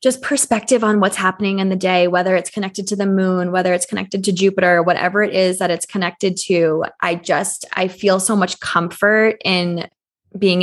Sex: female